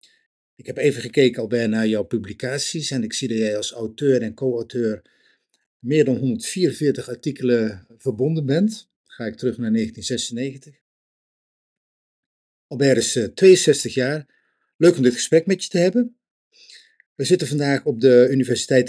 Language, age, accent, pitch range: Dutch, 50-69, Dutch, 115-145 Hz